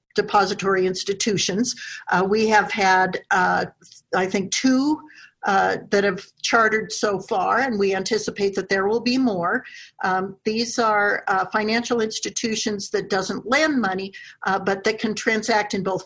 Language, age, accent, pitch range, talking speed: English, 50-69, American, 195-240 Hz, 155 wpm